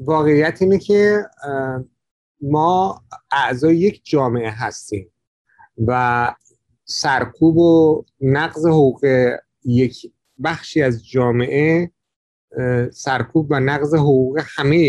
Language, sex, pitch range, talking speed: Persian, male, 130-160 Hz, 90 wpm